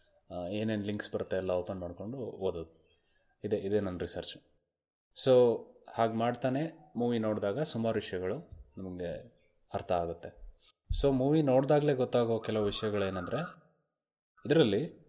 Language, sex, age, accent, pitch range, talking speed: Kannada, male, 20-39, native, 100-135 Hz, 110 wpm